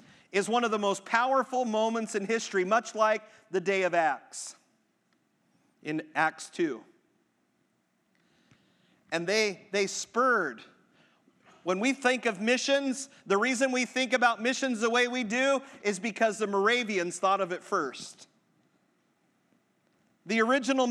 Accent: American